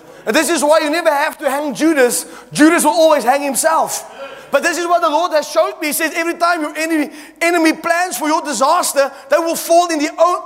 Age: 30-49